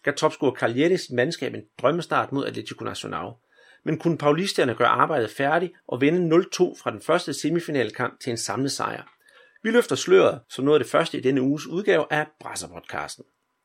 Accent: native